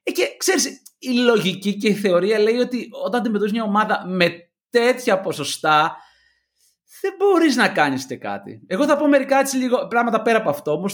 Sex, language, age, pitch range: male, Greek, 30-49, 140-230 Hz